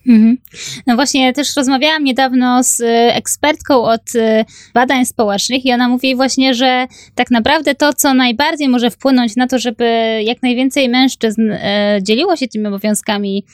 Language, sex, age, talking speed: Polish, female, 20-39, 145 wpm